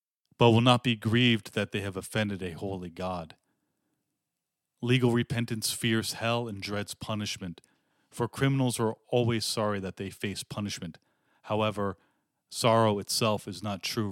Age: 40-59